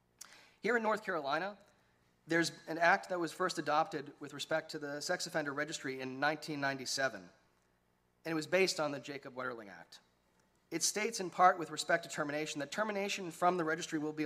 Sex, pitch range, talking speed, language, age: male, 130-175 Hz, 185 wpm, English, 30-49